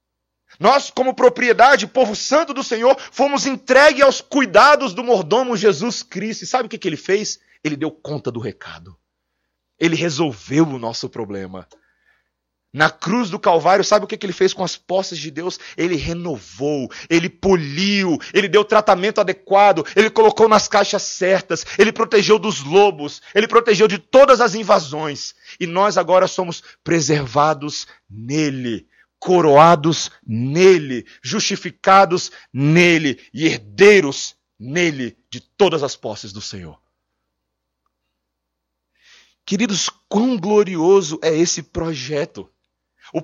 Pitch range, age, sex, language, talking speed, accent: 145-215 Hz, 40-59, male, Portuguese, 130 wpm, Brazilian